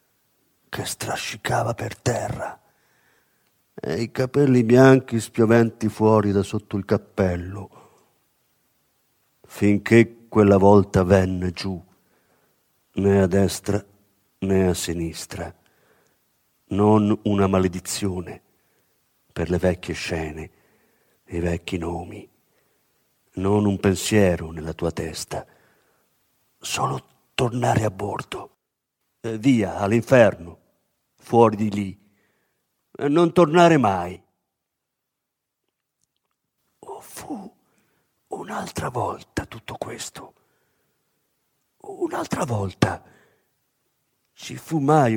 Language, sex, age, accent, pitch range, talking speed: Italian, male, 50-69, native, 95-140 Hz, 90 wpm